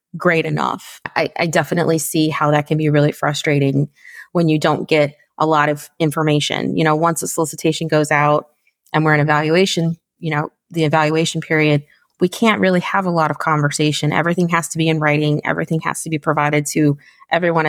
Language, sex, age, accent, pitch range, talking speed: English, female, 30-49, American, 145-165 Hz, 195 wpm